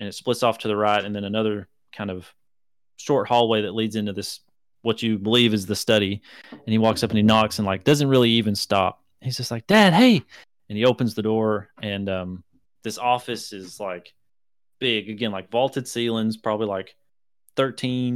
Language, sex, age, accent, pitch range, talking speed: English, male, 30-49, American, 100-115 Hz, 200 wpm